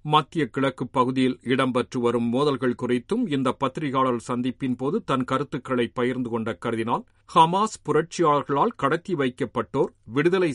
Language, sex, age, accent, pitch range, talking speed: Tamil, male, 50-69, native, 125-155 Hz, 115 wpm